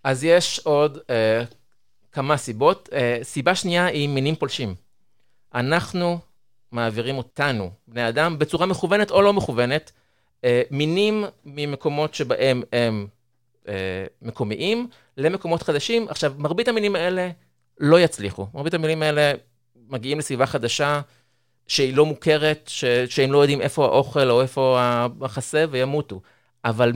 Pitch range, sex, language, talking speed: 125-160 Hz, male, Hebrew, 125 wpm